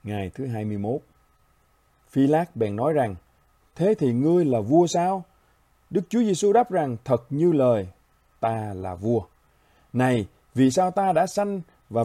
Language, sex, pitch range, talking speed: Vietnamese, male, 110-165 Hz, 160 wpm